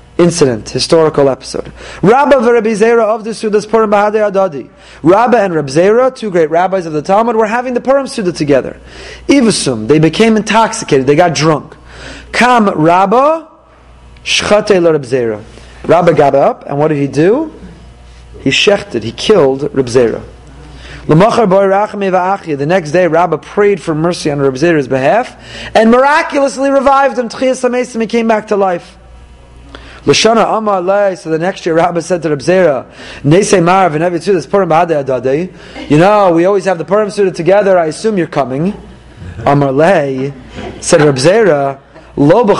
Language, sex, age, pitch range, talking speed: English, male, 30-49, 155-225 Hz, 115 wpm